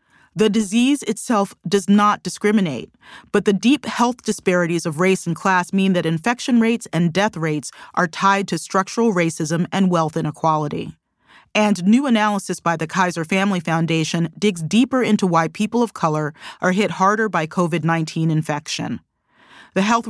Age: 30-49